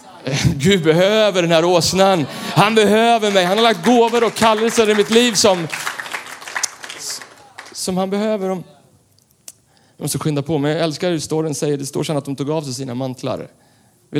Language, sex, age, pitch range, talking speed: Swedish, male, 30-49, 135-185 Hz, 185 wpm